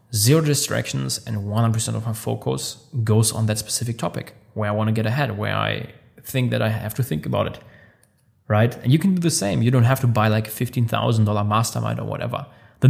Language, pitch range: English, 110-130 Hz